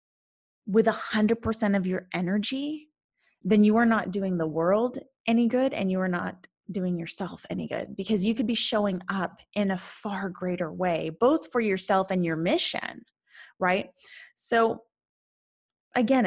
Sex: female